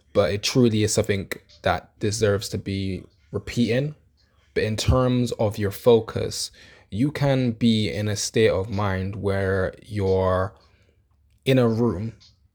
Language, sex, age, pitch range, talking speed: English, male, 20-39, 95-110 Hz, 140 wpm